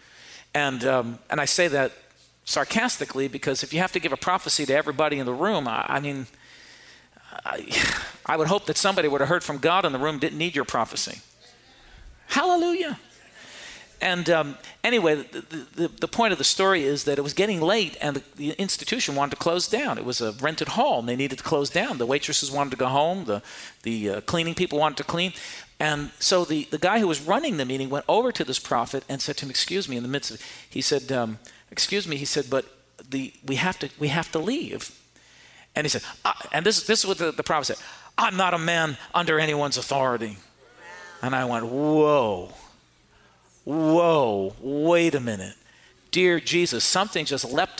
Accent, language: American, English